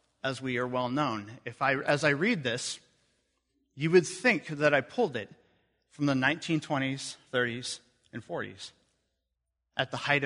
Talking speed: 160 wpm